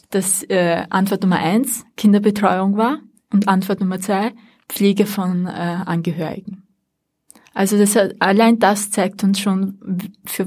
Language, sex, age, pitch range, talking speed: German, female, 20-39, 185-215 Hz, 140 wpm